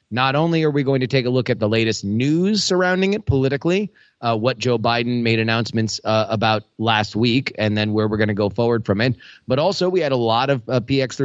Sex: male